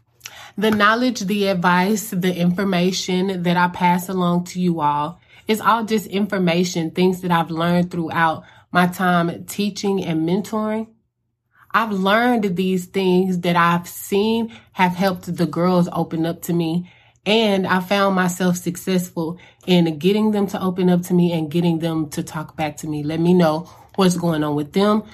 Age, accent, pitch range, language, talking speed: 20-39, American, 165-200 Hz, English, 170 wpm